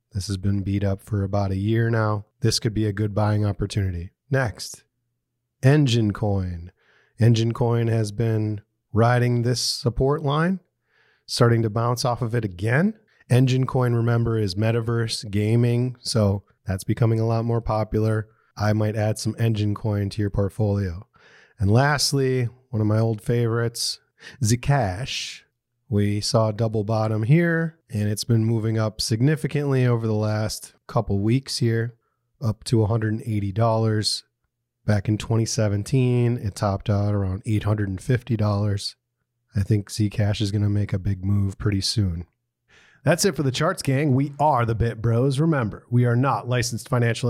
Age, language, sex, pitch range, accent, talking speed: 30-49, English, male, 105-125 Hz, American, 155 wpm